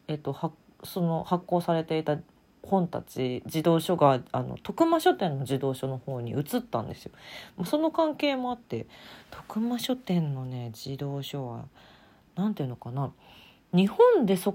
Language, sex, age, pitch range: Japanese, female, 40-59, 145-220 Hz